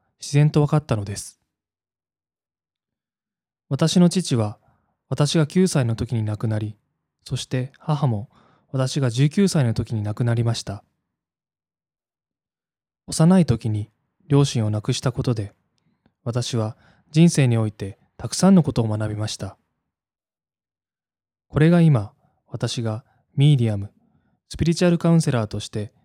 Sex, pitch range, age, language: male, 105-145 Hz, 20-39, Japanese